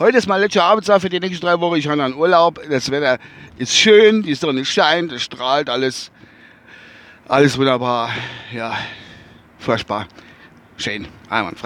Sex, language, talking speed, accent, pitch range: male, German, 150 wpm, German, 120-160 Hz